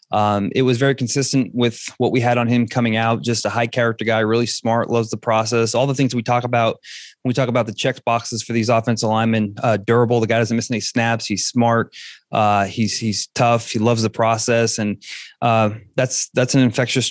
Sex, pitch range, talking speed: male, 110-120 Hz, 225 wpm